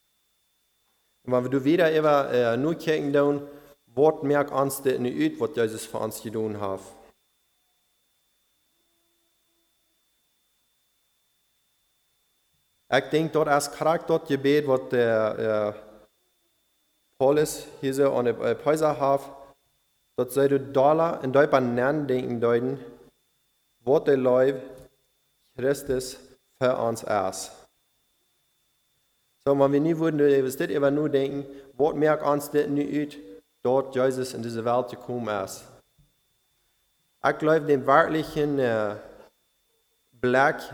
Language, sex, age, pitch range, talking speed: English, male, 30-49, 120-145 Hz, 100 wpm